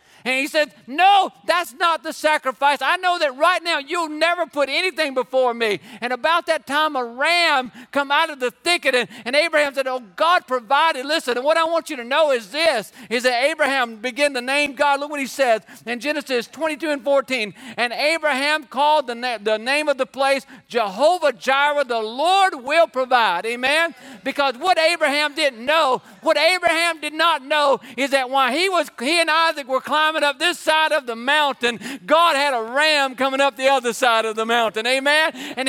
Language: English